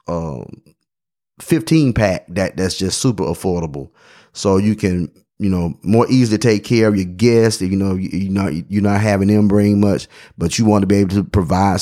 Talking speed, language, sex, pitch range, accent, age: 205 wpm, English, male, 90-105 Hz, American, 30-49